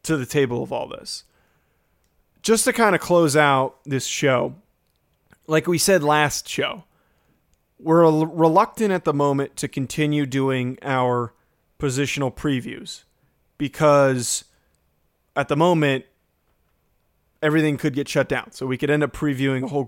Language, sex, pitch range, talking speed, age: English, male, 135-155 Hz, 140 wpm, 20-39